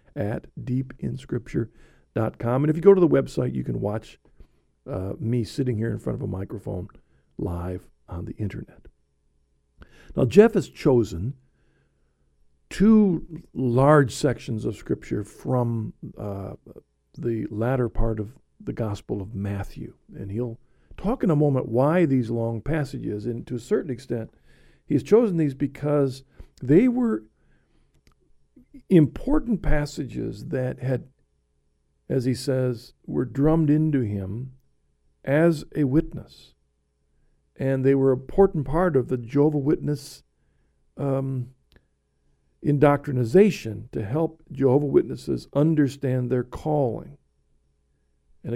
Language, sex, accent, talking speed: English, male, American, 120 wpm